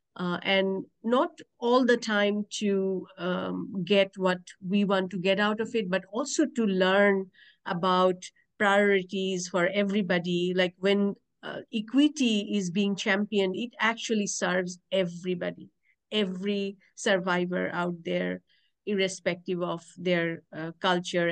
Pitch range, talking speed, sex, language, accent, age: 180-205 Hz, 125 wpm, female, English, Indian, 50-69